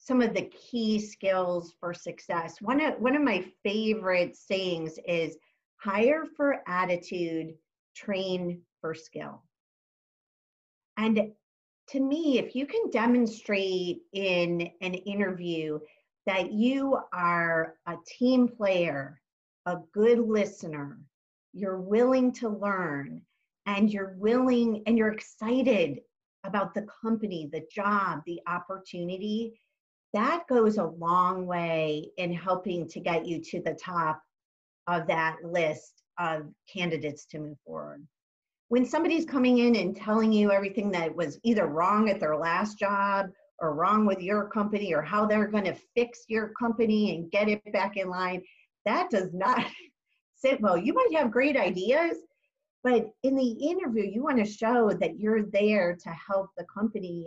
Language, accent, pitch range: English, American, 175-230 Hz